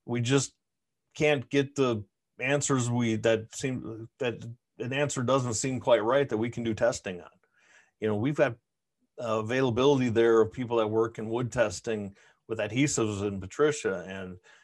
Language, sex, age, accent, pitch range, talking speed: English, male, 40-59, American, 105-125 Hz, 165 wpm